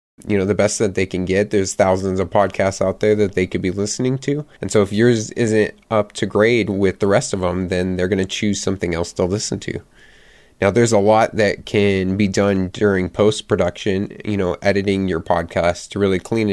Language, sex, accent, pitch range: English, male, American, 95-110 Hz